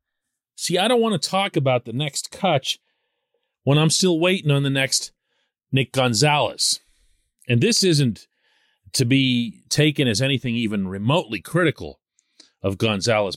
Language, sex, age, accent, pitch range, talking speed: English, male, 40-59, American, 110-155 Hz, 145 wpm